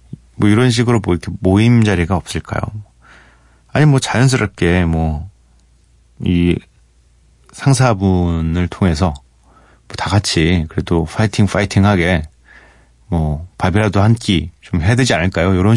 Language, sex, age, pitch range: Korean, male, 40-59, 80-115 Hz